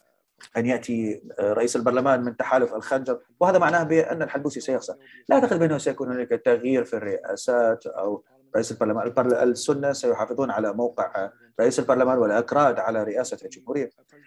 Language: English